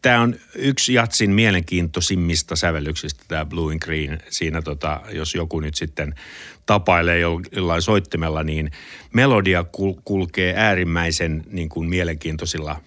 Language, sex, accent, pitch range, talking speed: Finnish, male, native, 80-100 Hz, 125 wpm